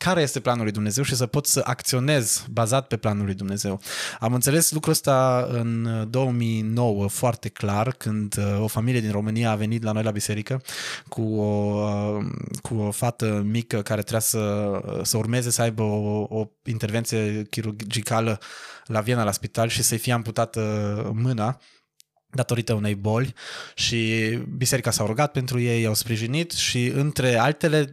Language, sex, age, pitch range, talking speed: Romanian, male, 20-39, 110-130 Hz, 155 wpm